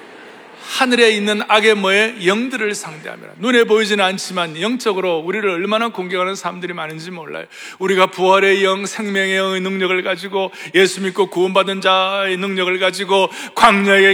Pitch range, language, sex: 185-250 Hz, Korean, male